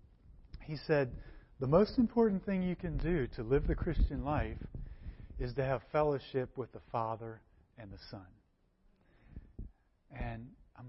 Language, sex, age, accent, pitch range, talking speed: English, male, 40-59, American, 130-180 Hz, 145 wpm